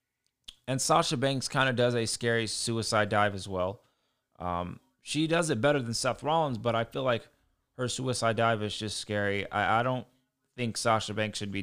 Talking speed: 195 wpm